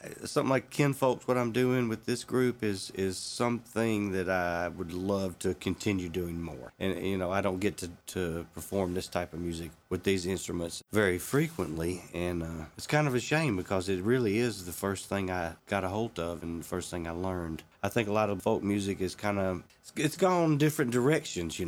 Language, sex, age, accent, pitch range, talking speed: English, male, 40-59, American, 90-105 Hz, 220 wpm